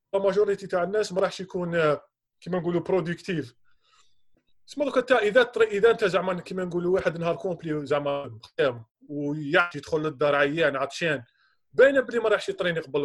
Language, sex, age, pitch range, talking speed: Arabic, male, 20-39, 145-210 Hz, 155 wpm